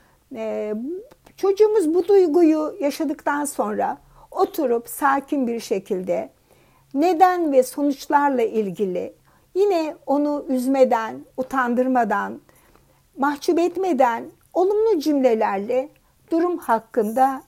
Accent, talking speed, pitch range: native, 80 wpm, 225-320 Hz